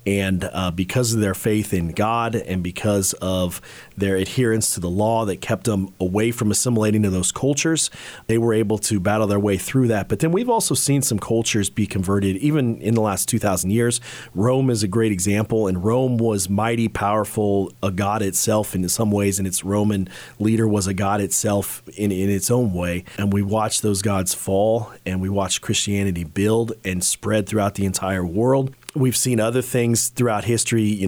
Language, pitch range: English, 95-115 Hz